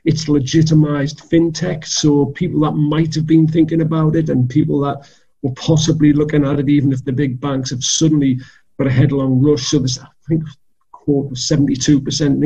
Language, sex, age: English, male, 40-59